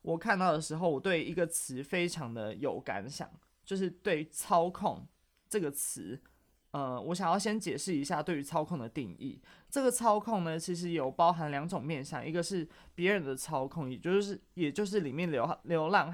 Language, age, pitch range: Chinese, 20-39, 140-180 Hz